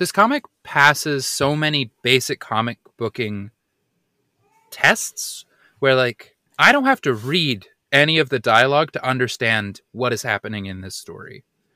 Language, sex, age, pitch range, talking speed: English, male, 20-39, 110-140 Hz, 145 wpm